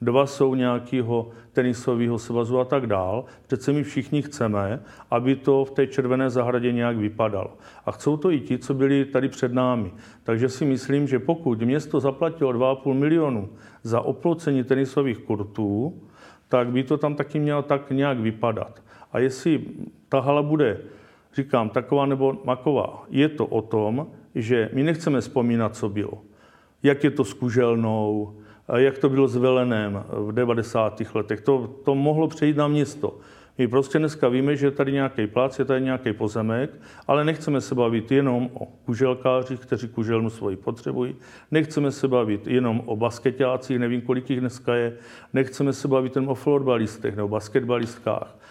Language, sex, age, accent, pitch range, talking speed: Czech, male, 50-69, native, 115-140 Hz, 165 wpm